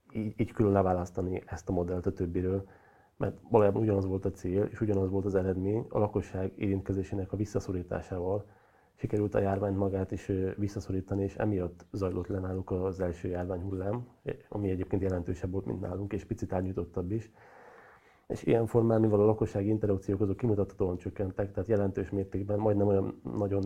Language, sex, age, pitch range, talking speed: Hungarian, male, 30-49, 95-105 Hz, 160 wpm